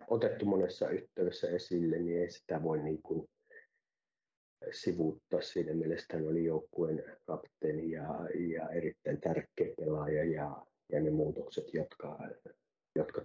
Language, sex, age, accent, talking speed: Finnish, male, 30-49, native, 120 wpm